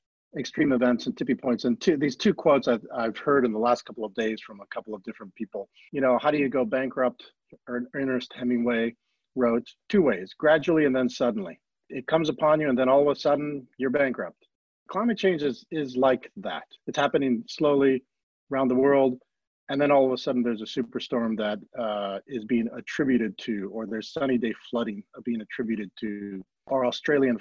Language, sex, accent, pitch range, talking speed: English, male, American, 120-140 Hz, 195 wpm